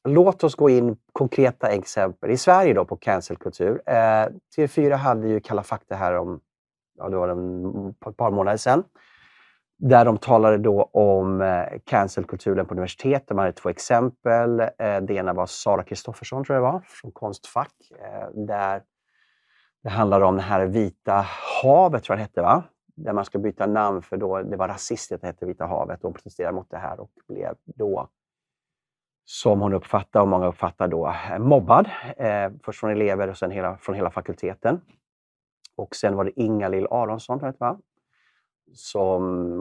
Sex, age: male, 30-49